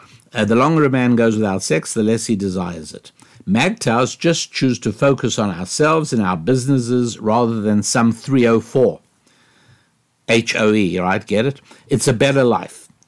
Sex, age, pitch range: male, 60-79, 105-130 Hz